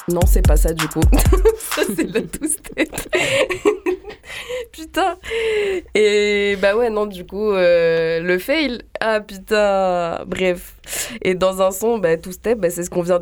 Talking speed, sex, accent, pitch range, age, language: 155 wpm, female, French, 160-205 Hz, 20-39, French